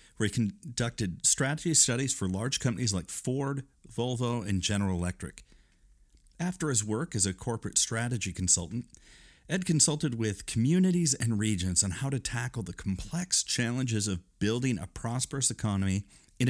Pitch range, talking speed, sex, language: 90-125 Hz, 150 wpm, male, English